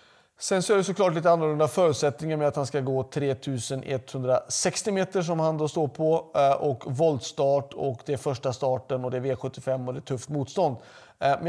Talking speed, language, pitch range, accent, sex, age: 190 wpm, Swedish, 140-170 Hz, native, male, 30-49